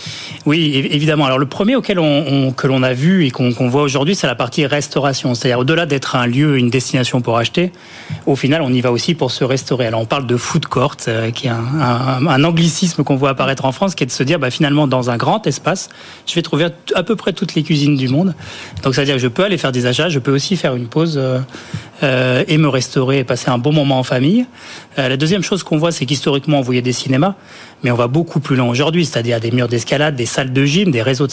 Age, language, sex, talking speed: 30-49, French, male, 255 wpm